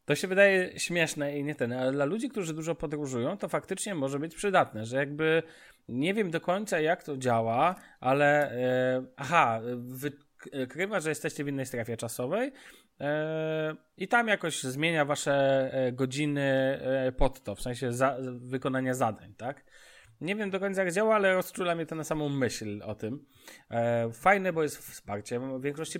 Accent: native